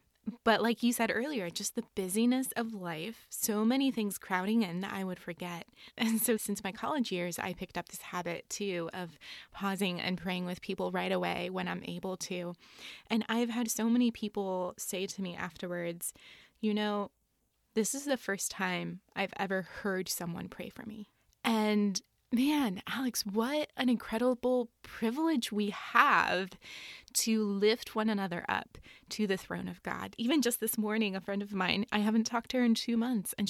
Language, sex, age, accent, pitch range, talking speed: English, female, 20-39, American, 185-225 Hz, 185 wpm